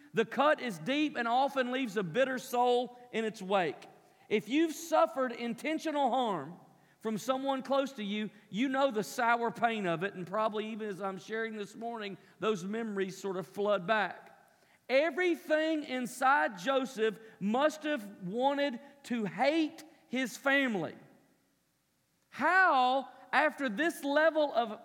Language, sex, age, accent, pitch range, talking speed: English, male, 40-59, American, 220-275 Hz, 140 wpm